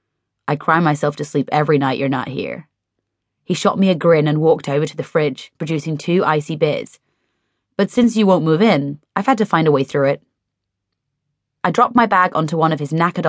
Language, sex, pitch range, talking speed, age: English, female, 150-195 Hz, 215 wpm, 30-49